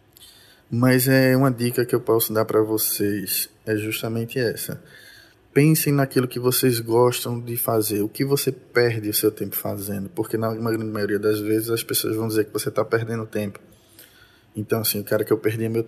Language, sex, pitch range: Portuguese, male, 105-125 Hz